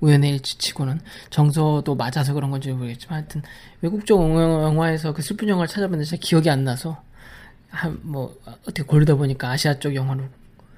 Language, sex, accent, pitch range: Korean, male, native, 140-175 Hz